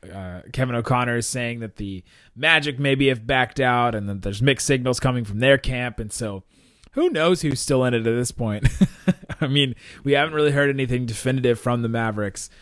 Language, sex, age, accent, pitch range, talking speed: English, male, 20-39, American, 115-140 Hz, 205 wpm